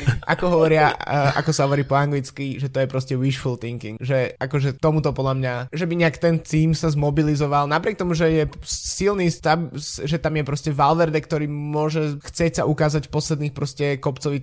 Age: 20-39